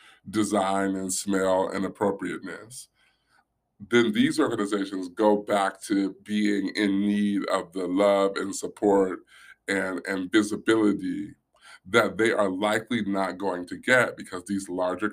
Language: English